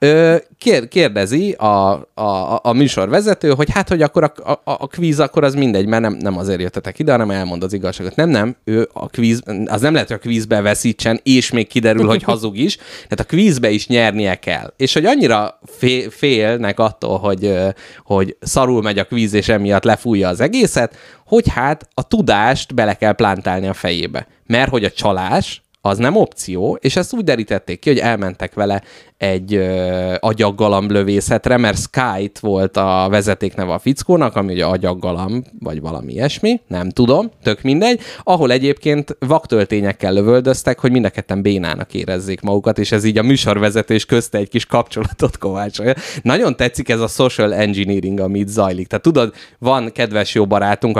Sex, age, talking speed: male, 30-49, 170 wpm